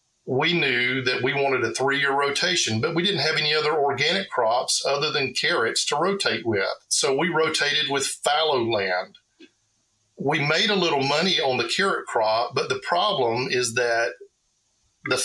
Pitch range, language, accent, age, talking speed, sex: 115-150 Hz, English, American, 50-69, 170 wpm, male